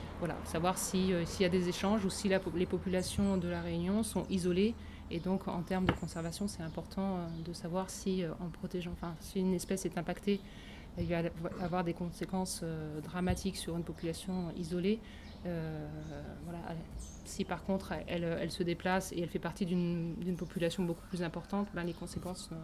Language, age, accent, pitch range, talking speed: French, 20-39, French, 170-195 Hz, 170 wpm